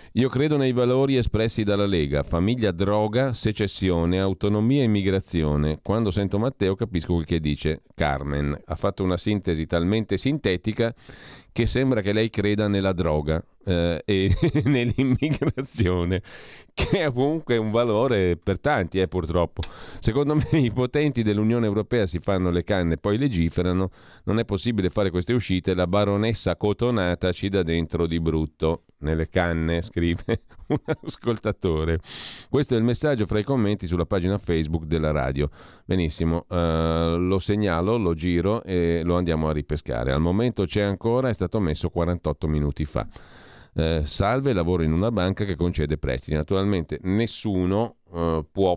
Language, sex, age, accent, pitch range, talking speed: Italian, male, 40-59, native, 85-110 Hz, 155 wpm